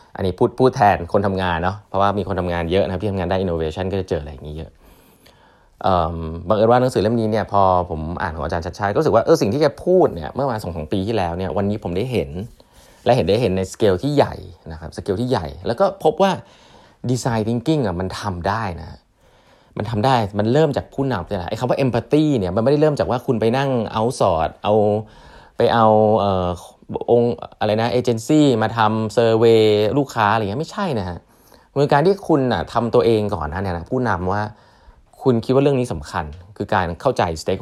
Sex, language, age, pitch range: male, Thai, 20-39, 95-120 Hz